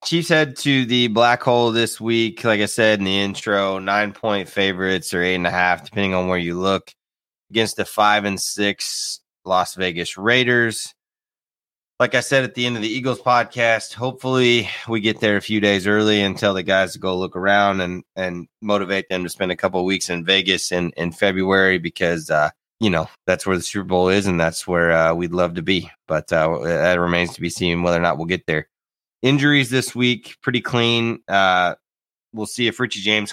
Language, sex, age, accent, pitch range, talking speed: English, male, 20-39, American, 90-110 Hz, 200 wpm